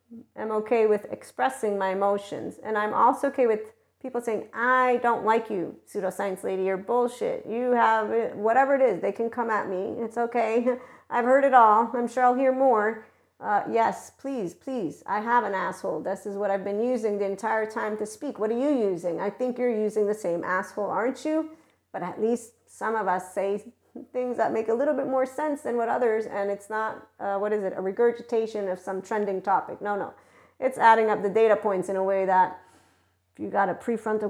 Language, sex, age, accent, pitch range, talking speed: English, female, 40-59, American, 195-240 Hz, 215 wpm